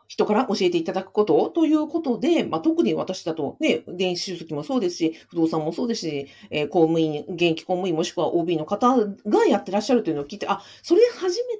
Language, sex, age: Japanese, female, 50-69